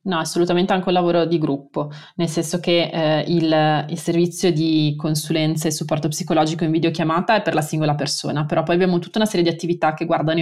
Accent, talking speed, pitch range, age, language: native, 205 wpm, 155-175 Hz, 20-39, Italian